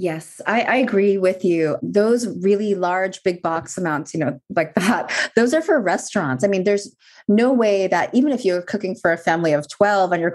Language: English